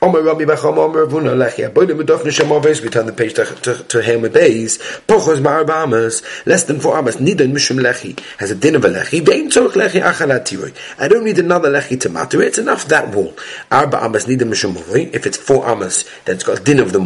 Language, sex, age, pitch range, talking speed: English, male, 30-49, 130-175 Hz, 80 wpm